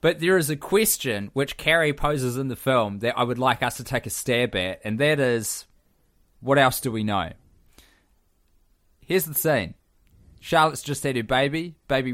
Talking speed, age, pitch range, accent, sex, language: 190 wpm, 20-39, 95-130 Hz, Australian, male, English